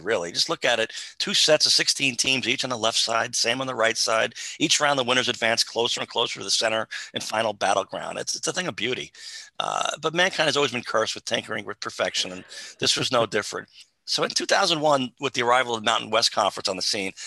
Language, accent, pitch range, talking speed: English, American, 115-145 Hz, 240 wpm